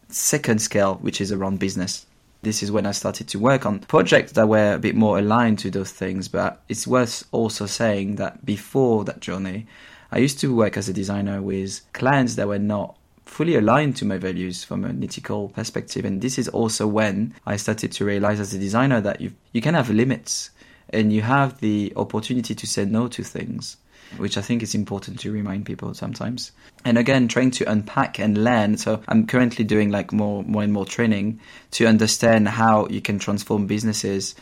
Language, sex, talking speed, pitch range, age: English, male, 200 wpm, 100-115 Hz, 20-39